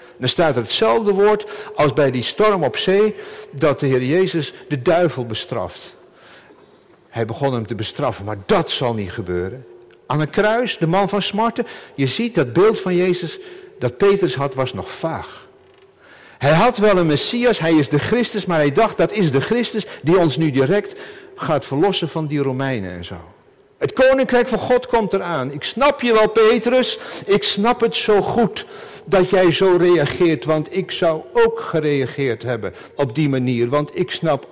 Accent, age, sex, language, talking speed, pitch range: Dutch, 60-79, male, Dutch, 185 wpm, 140-215 Hz